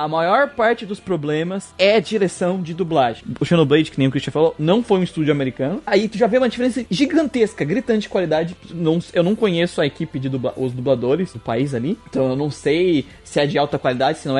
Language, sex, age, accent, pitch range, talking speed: Portuguese, male, 20-39, Brazilian, 145-210 Hz, 230 wpm